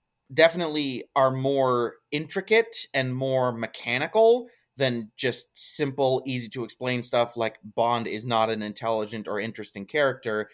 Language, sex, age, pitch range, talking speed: English, male, 30-49, 120-150 Hz, 120 wpm